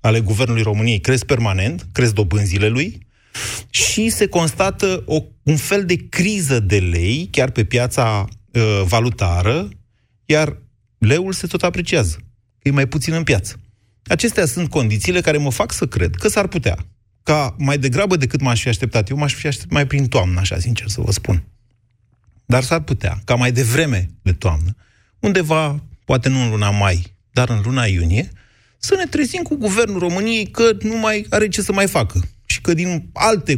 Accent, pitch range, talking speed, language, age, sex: native, 105-160 Hz, 175 wpm, Romanian, 30-49, male